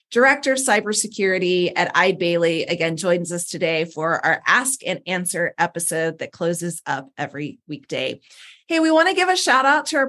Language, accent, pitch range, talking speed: English, American, 180-255 Hz, 180 wpm